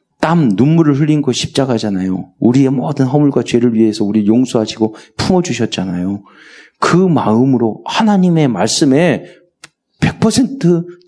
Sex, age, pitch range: male, 40-59, 105-145 Hz